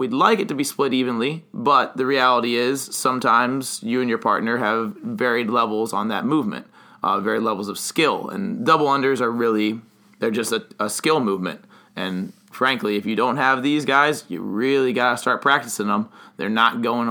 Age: 20-39